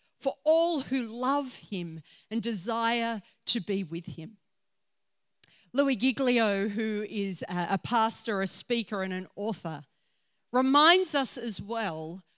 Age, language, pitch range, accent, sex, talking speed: 40-59, English, 200-260 Hz, Australian, female, 125 wpm